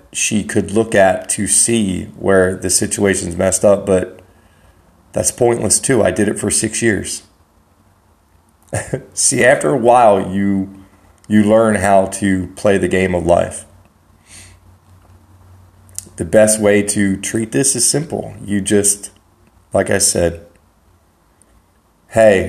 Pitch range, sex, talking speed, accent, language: 90-110 Hz, male, 130 wpm, American, English